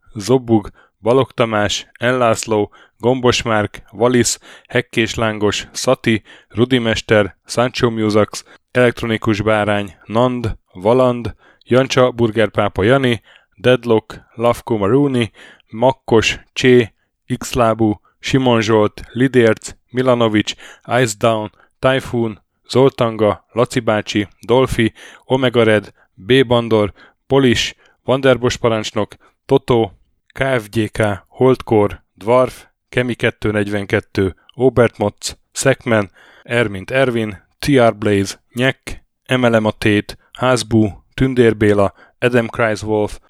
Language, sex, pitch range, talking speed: Hungarian, male, 105-125 Hz, 85 wpm